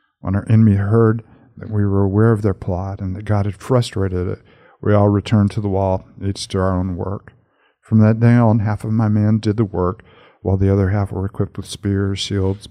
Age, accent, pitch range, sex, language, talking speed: 50-69, American, 100-110 Hz, male, English, 225 wpm